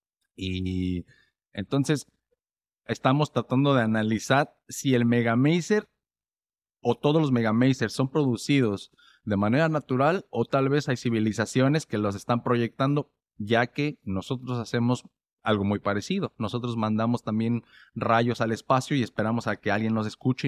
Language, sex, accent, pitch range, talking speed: Spanish, male, Mexican, 105-130 Hz, 140 wpm